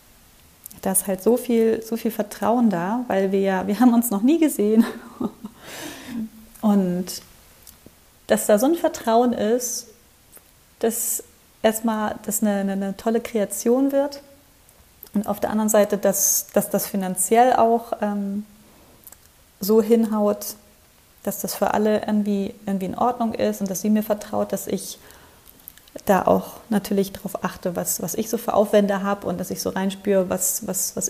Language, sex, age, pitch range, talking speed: German, female, 30-49, 200-230 Hz, 155 wpm